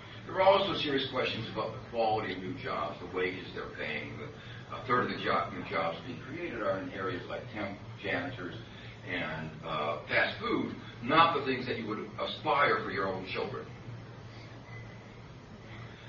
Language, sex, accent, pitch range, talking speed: English, male, American, 110-135 Hz, 170 wpm